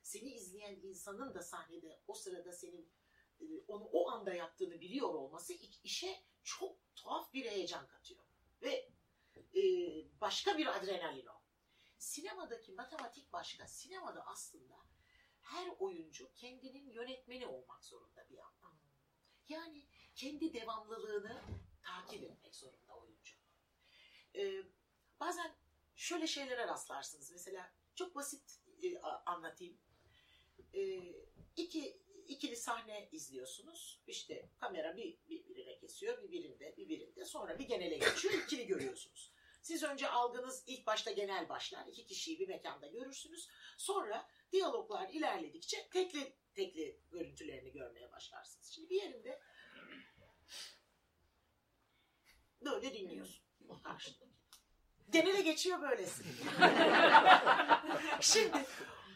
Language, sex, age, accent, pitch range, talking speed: Turkish, female, 60-79, native, 230-375 Hz, 105 wpm